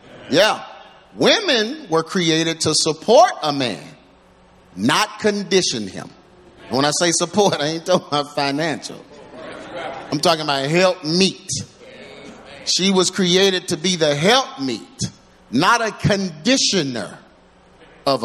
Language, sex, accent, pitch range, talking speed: English, male, American, 135-185 Hz, 125 wpm